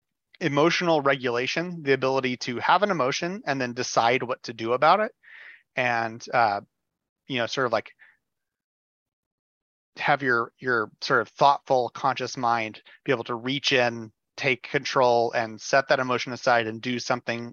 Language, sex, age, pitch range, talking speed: English, male, 30-49, 110-135 Hz, 160 wpm